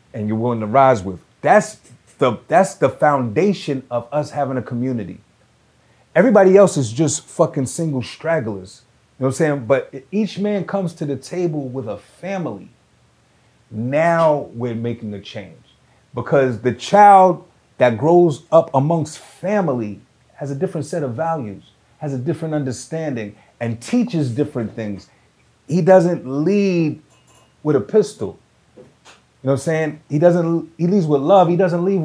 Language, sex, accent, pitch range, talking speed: English, male, American, 130-170 Hz, 160 wpm